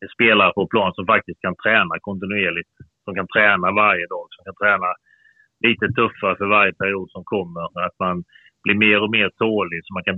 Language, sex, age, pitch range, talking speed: Swedish, male, 30-49, 95-110 Hz, 200 wpm